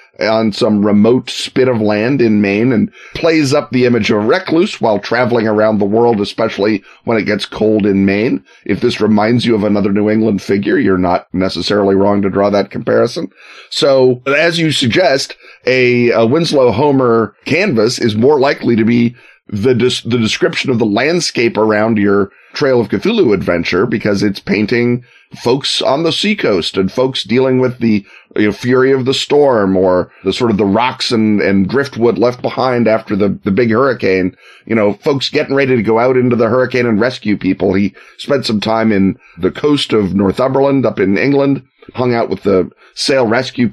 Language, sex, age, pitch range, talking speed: English, male, 30-49, 100-125 Hz, 190 wpm